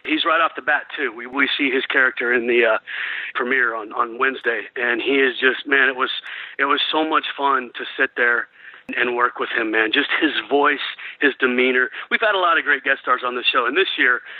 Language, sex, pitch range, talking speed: English, male, 125-205 Hz, 240 wpm